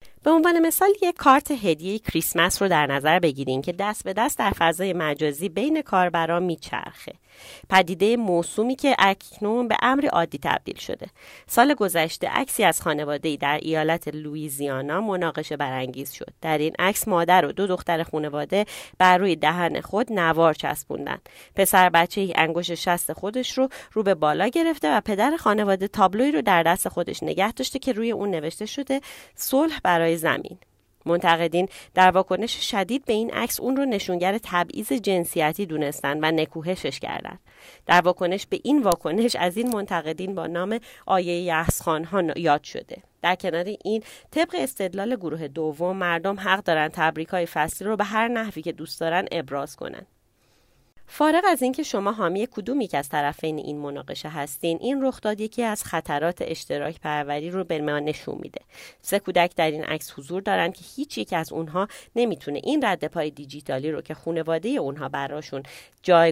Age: 30-49